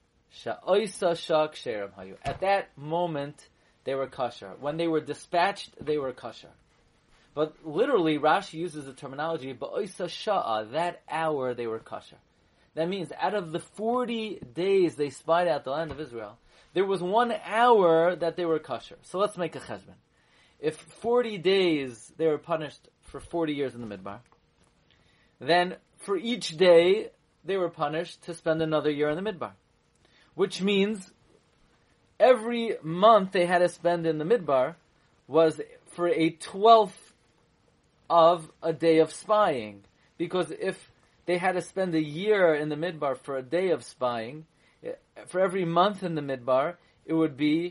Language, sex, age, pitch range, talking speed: English, male, 30-49, 140-180 Hz, 155 wpm